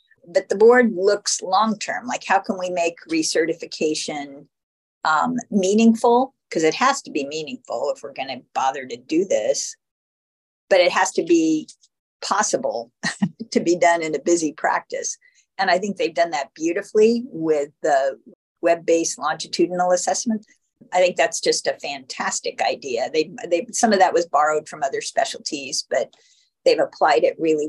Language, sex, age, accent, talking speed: English, female, 50-69, American, 160 wpm